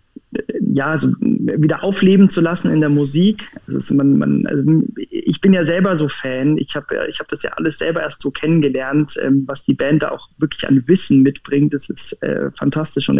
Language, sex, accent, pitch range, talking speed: German, male, German, 140-170 Hz, 205 wpm